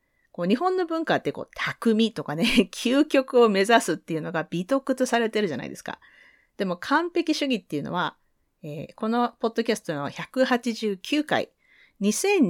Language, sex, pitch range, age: Japanese, female, 180-270 Hz, 40-59